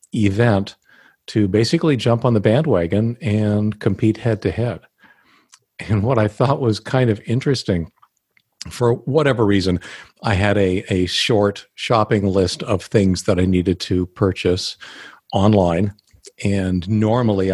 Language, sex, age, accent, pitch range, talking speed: English, male, 50-69, American, 95-110 Hz, 135 wpm